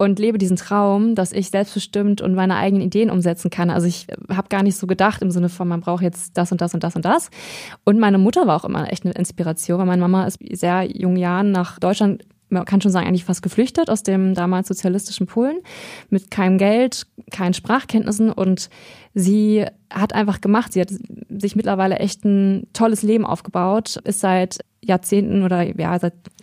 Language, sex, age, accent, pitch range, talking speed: German, female, 20-39, German, 185-220 Hz, 200 wpm